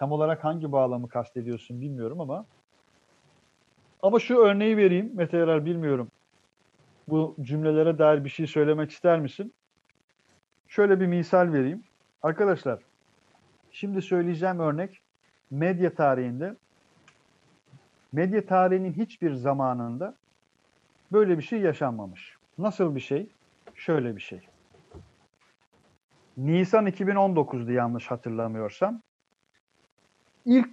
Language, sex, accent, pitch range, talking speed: Turkish, male, native, 145-190 Hz, 100 wpm